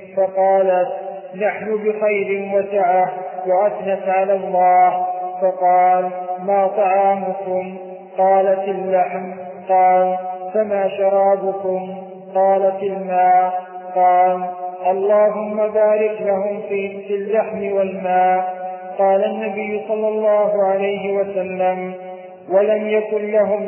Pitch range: 185-205 Hz